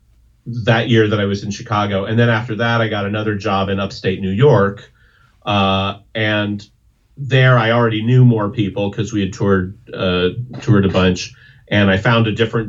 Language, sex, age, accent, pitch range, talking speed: English, male, 40-59, American, 100-120 Hz, 190 wpm